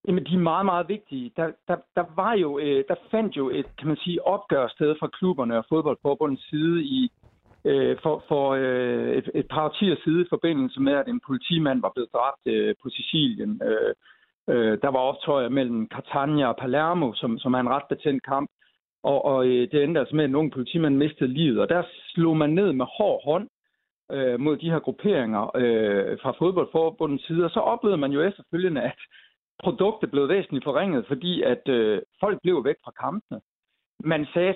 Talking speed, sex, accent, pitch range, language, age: 180 wpm, male, native, 135-190 Hz, Danish, 60-79